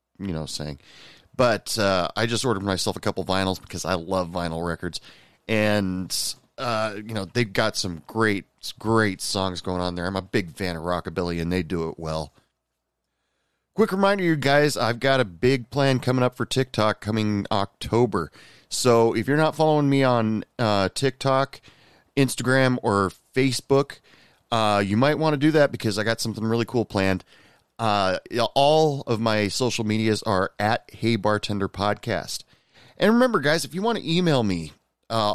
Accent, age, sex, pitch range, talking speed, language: American, 30-49, male, 100-135 Hz, 175 wpm, English